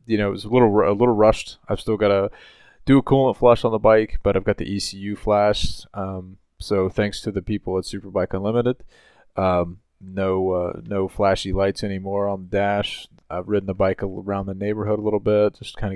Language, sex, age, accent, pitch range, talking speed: English, male, 30-49, American, 90-105 Hz, 215 wpm